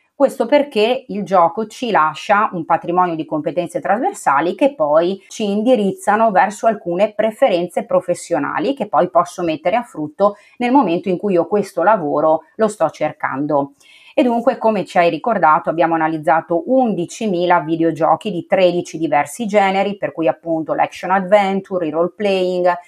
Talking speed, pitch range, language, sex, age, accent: 150 wpm, 175-225 Hz, Italian, female, 30-49, native